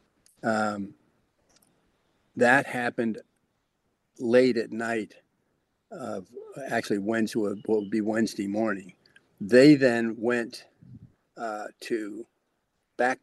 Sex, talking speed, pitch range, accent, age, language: male, 90 wpm, 105-120 Hz, American, 50-69, English